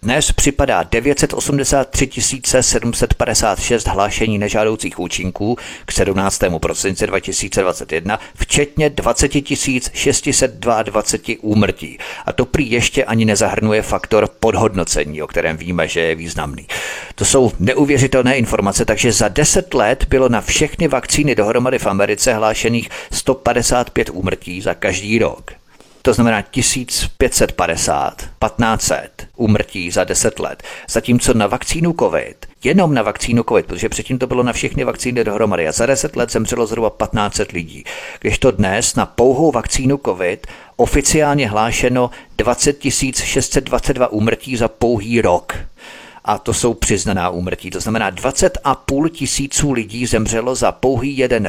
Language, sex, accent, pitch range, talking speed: Czech, male, native, 105-135 Hz, 130 wpm